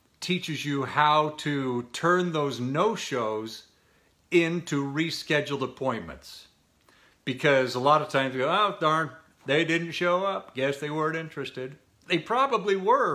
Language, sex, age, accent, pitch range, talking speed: English, male, 50-69, American, 130-175 Hz, 135 wpm